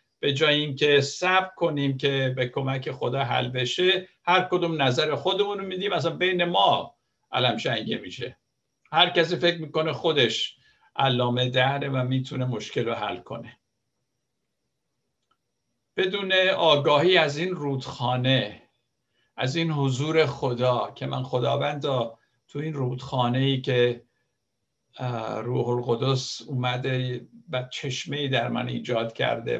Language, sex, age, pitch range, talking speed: Persian, male, 60-79, 125-160 Hz, 125 wpm